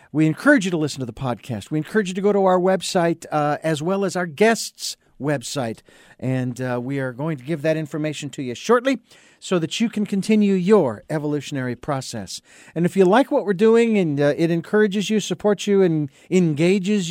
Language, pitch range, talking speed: English, 145-185 Hz, 205 wpm